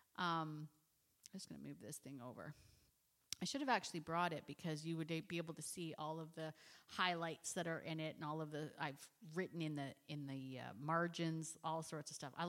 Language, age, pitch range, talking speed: English, 40-59, 160-240 Hz, 225 wpm